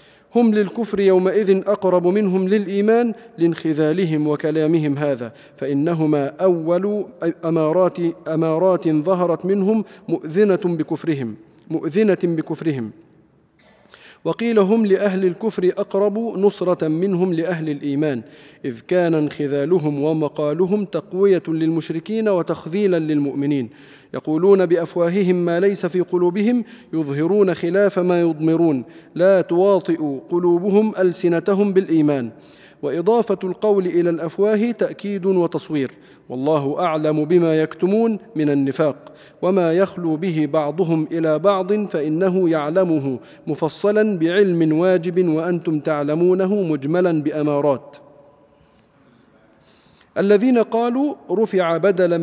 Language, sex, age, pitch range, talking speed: Arabic, male, 40-59, 155-195 Hz, 95 wpm